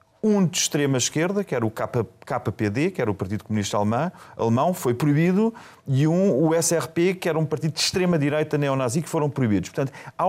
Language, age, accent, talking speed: Portuguese, 40-59, Portuguese, 180 wpm